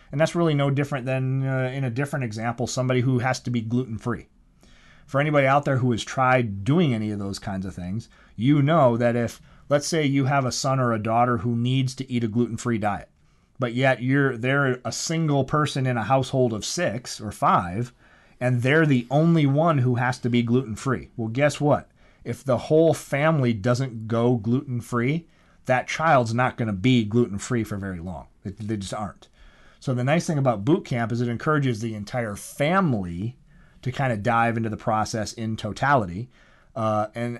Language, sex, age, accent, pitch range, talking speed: English, male, 30-49, American, 115-140 Hz, 205 wpm